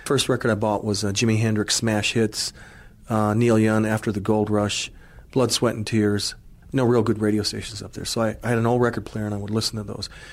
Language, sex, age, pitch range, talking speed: English, male, 40-59, 105-120 Hz, 245 wpm